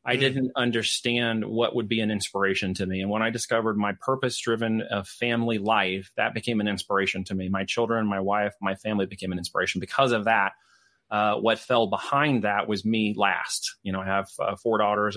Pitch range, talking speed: 100-120 Hz, 210 wpm